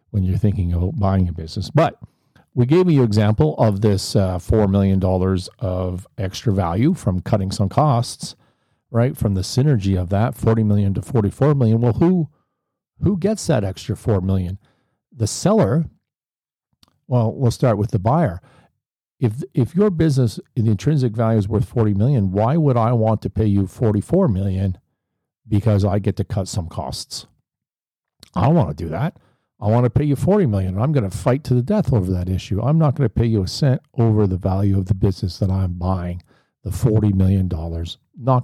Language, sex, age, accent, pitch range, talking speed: English, male, 50-69, American, 95-125 Hz, 195 wpm